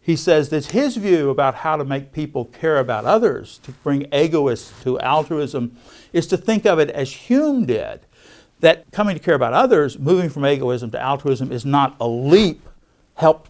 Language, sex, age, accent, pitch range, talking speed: English, male, 60-79, American, 130-165 Hz, 185 wpm